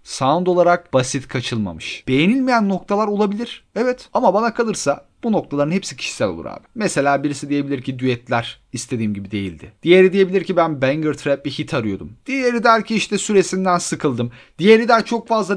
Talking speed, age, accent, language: 170 wpm, 40-59, native, Turkish